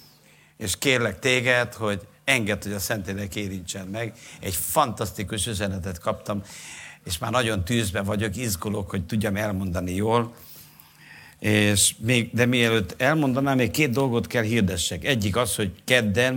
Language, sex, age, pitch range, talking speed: Hungarian, male, 60-79, 95-125 Hz, 140 wpm